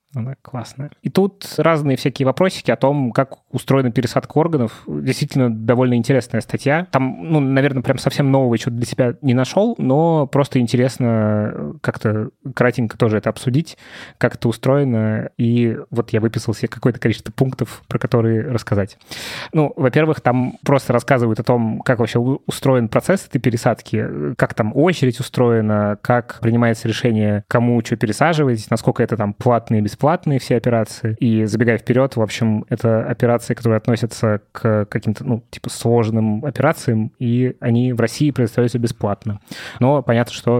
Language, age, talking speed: Russian, 20-39, 155 wpm